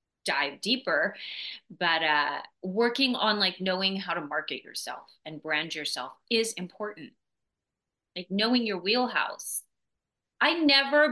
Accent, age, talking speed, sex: American, 30-49, 125 wpm, female